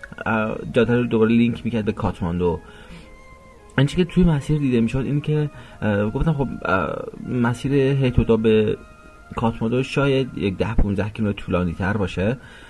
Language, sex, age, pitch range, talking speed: Persian, male, 30-49, 95-115 Hz, 135 wpm